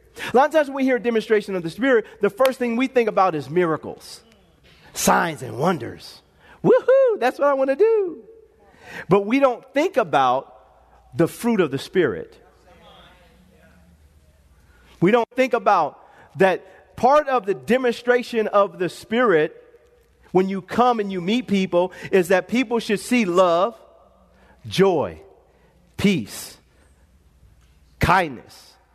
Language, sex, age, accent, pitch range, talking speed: English, male, 40-59, American, 190-265 Hz, 140 wpm